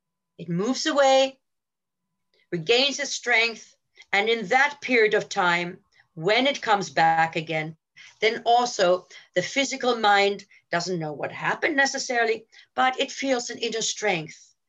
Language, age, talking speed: English, 50-69, 135 wpm